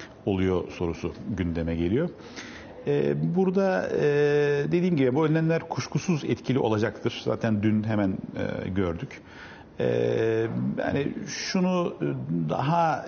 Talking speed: 85 wpm